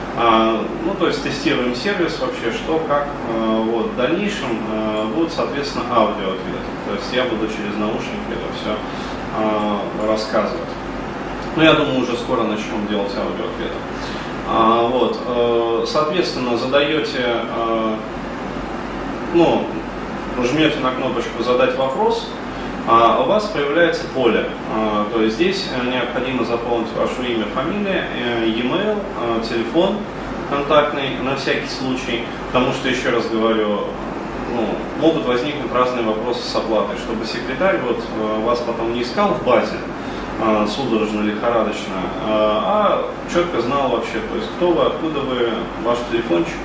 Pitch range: 110-135 Hz